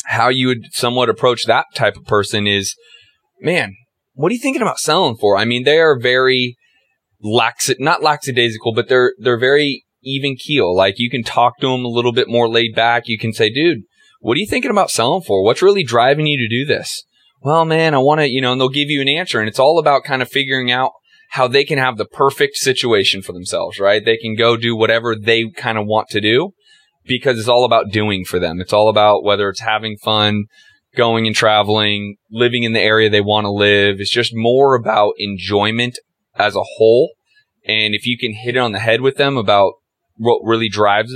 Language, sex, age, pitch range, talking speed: English, male, 20-39, 110-135 Hz, 220 wpm